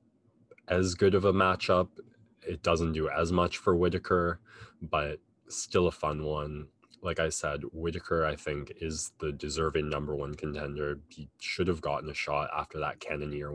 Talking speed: 170 wpm